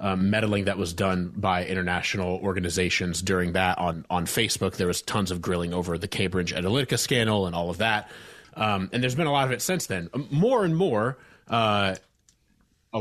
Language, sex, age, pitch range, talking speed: English, male, 30-49, 95-115 Hz, 195 wpm